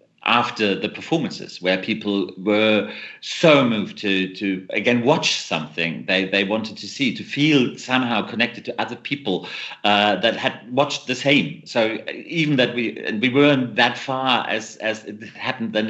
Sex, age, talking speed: male, 40-59, 170 wpm